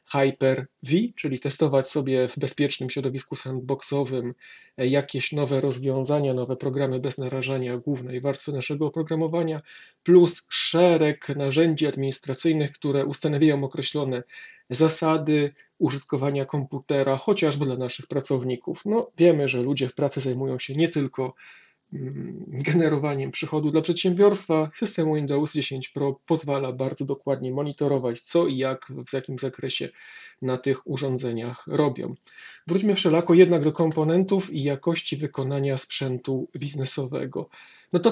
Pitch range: 135-160 Hz